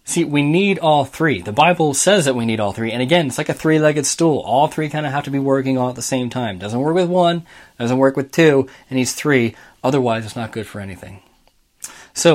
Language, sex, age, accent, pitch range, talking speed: English, male, 20-39, American, 115-155 Hz, 250 wpm